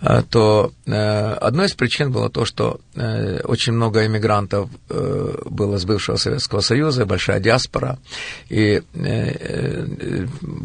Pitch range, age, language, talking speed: 105-135 Hz, 50-69, Russian, 125 wpm